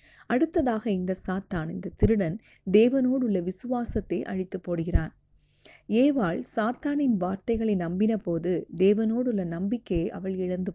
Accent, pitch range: native, 180-225 Hz